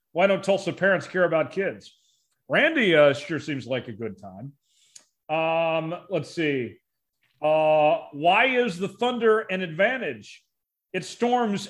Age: 40-59